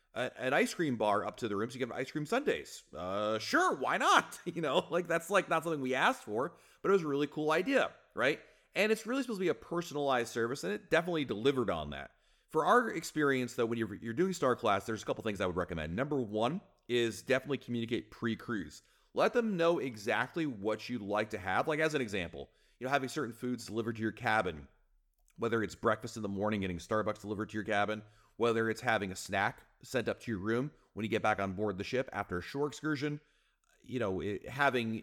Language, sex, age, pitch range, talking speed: English, male, 30-49, 100-140 Hz, 230 wpm